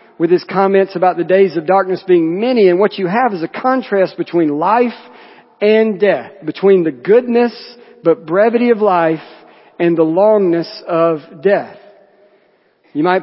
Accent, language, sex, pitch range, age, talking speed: American, English, male, 155-200 Hz, 50-69, 160 wpm